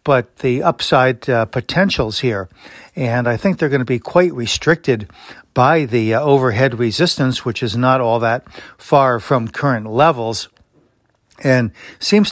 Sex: male